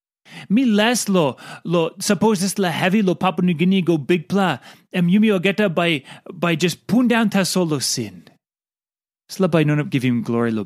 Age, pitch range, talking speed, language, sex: 30-49, 155-210 Hz, 190 wpm, English, male